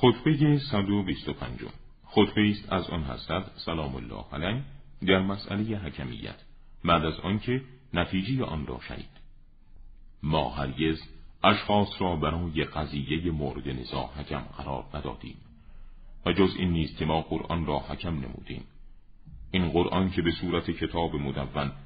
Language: Persian